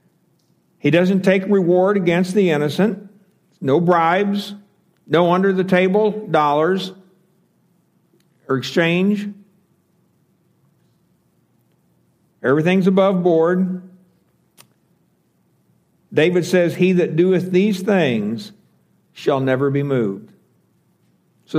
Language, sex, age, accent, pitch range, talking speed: English, male, 60-79, American, 165-195 Hz, 85 wpm